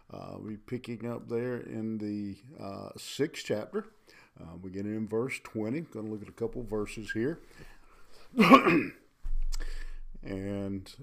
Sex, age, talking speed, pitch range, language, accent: male, 50-69, 140 wpm, 105-125 Hz, English, American